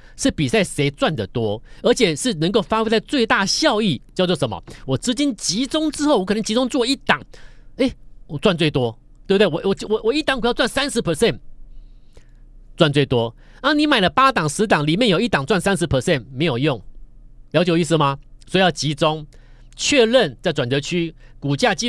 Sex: male